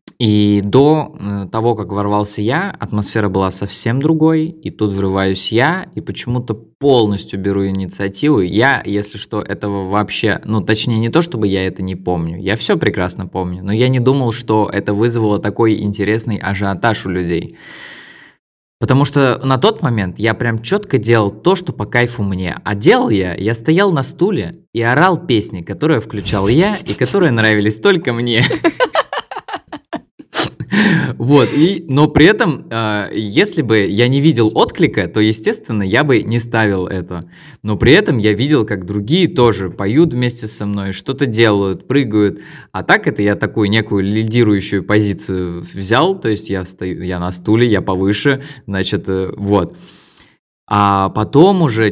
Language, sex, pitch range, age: Russian, male, 100-130 Hz, 20-39